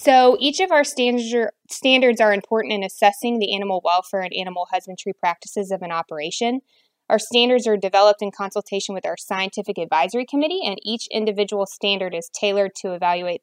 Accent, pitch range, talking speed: American, 190-220 Hz, 170 wpm